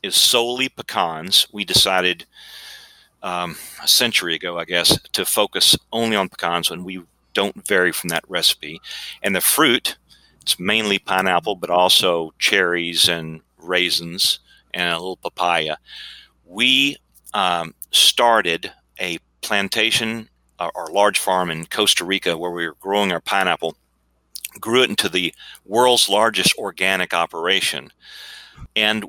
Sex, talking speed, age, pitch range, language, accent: male, 135 wpm, 40-59, 85-105 Hz, English, American